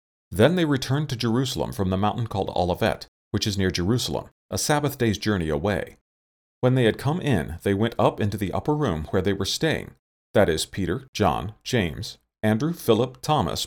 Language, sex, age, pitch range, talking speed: English, male, 40-59, 90-125 Hz, 190 wpm